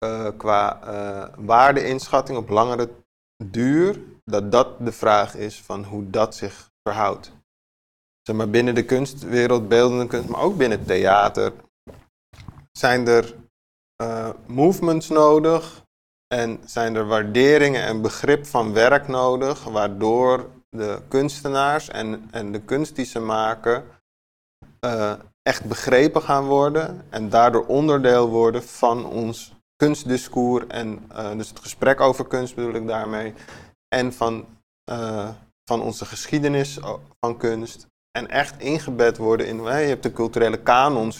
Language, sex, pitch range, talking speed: Dutch, male, 110-130 Hz, 135 wpm